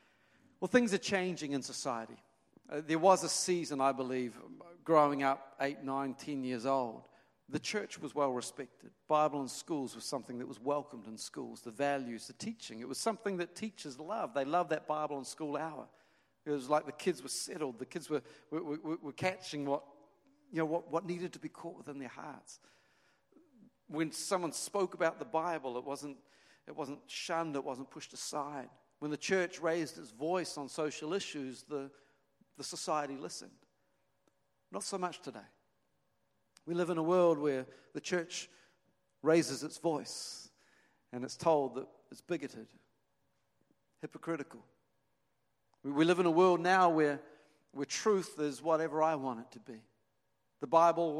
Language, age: English, 50-69